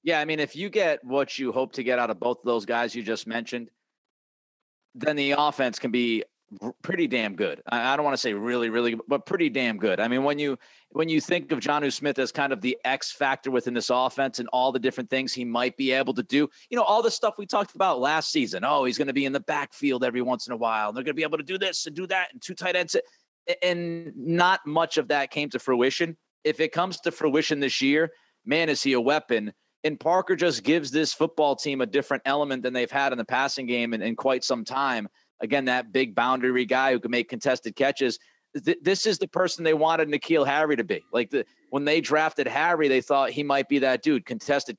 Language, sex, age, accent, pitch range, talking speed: English, male, 30-49, American, 130-160 Hz, 250 wpm